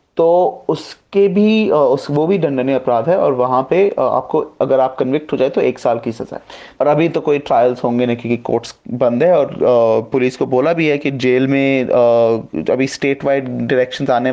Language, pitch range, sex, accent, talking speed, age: Hindi, 120-145 Hz, male, native, 200 wpm, 30-49